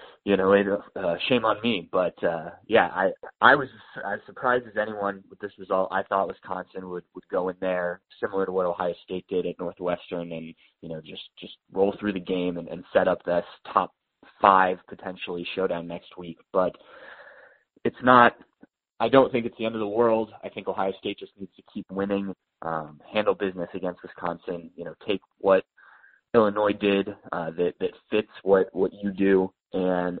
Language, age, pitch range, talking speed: English, 20-39, 85-100 Hz, 190 wpm